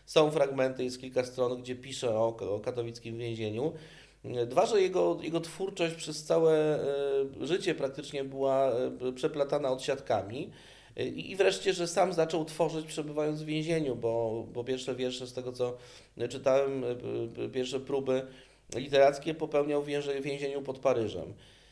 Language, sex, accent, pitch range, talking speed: Polish, male, native, 120-145 Hz, 130 wpm